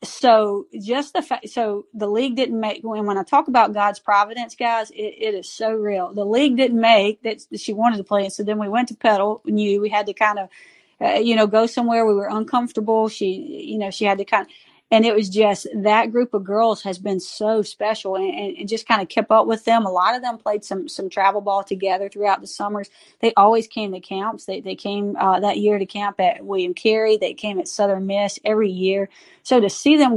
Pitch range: 195-225 Hz